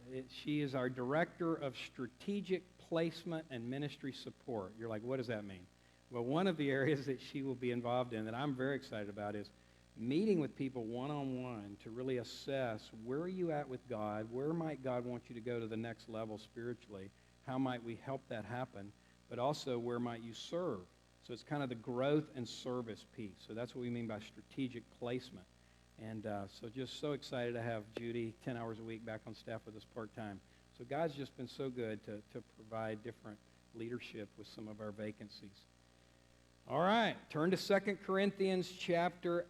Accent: American